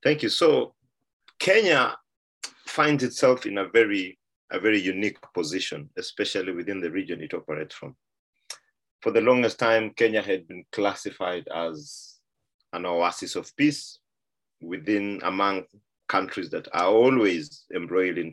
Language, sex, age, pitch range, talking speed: English, male, 30-49, 95-140 Hz, 135 wpm